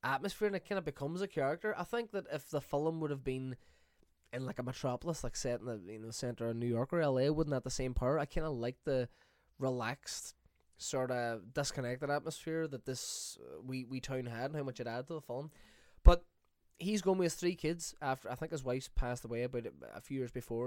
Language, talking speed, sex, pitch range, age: English, 235 wpm, male, 120-150 Hz, 10-29